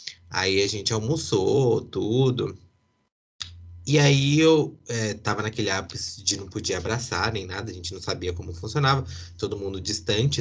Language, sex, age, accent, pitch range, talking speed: Portuguese, male, 20-39, Brazilian, 95-125 Hz, 155 wpm